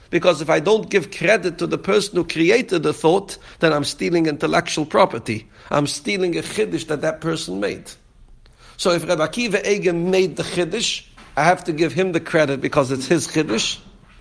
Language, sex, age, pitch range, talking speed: English, male, 60-79, 155-200 Hz, 190 wpm